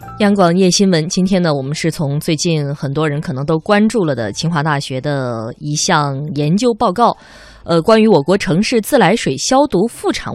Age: 20-39